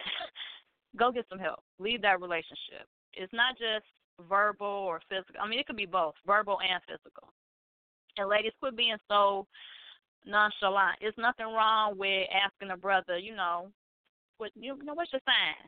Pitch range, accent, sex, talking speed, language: 200-315 Hz, American, female, 165 wpm, English